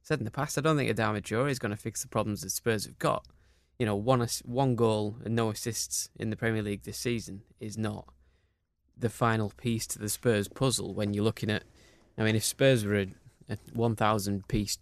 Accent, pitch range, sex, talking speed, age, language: British, 100-120 Hz, male, 225 wpm, 20-39, English